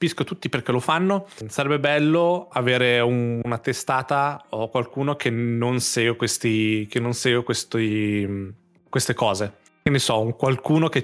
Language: Italian